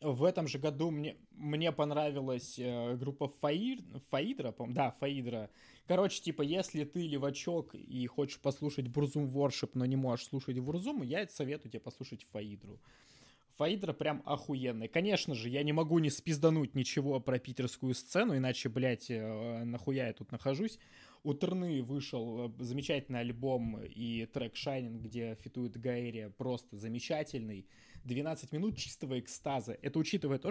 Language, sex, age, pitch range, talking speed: Russian, male, 20-39, 125-150 Hz, 145 wpm